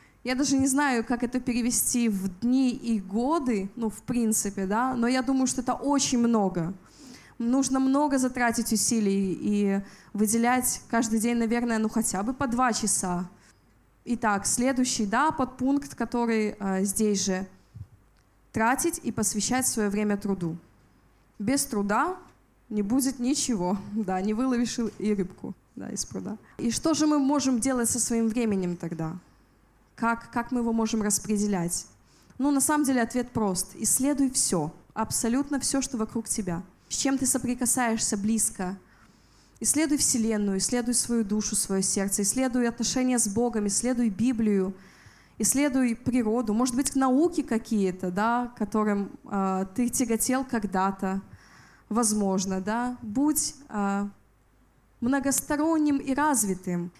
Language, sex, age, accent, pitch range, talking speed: Russian, female, 20-39, native, 205-255 Hz, 135 wpm